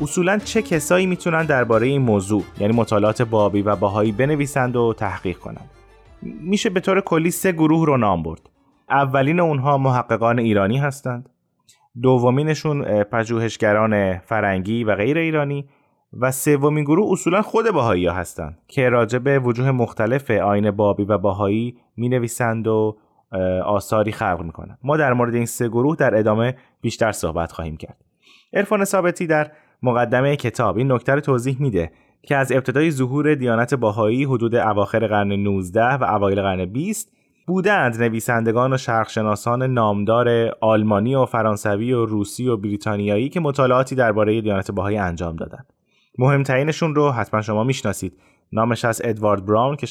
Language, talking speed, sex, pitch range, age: Persian, 145 wpm, male, 105-140 Hz, 30-49